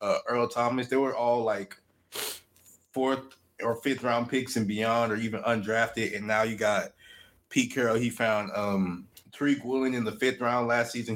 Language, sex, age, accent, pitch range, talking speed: English, male, 20-39, American, 105-130 Hz, 175 wpm